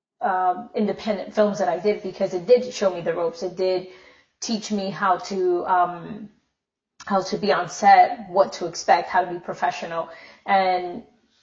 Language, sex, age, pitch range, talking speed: English, female, 30-49, 185-210 Hz, 175 wpm